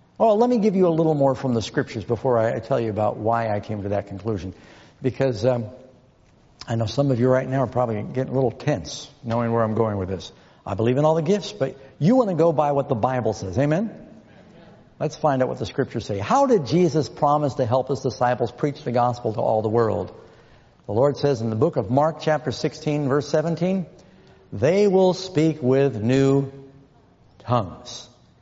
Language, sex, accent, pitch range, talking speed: English, male, American, 115-150 Hz, 210 wpm